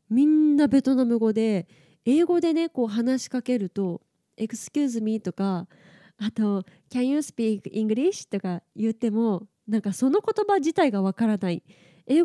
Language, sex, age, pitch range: Japanese, female, 20-39, 205-280 Hz